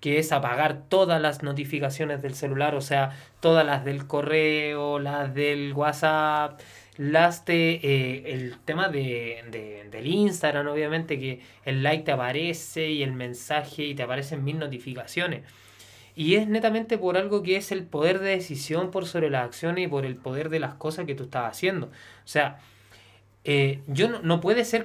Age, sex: 20-39, male